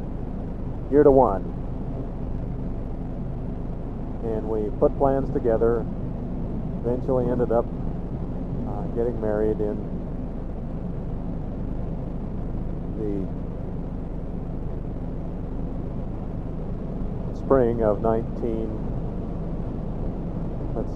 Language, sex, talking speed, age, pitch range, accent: English, male, 55 wpm, 50-69, 105-135 Hz, American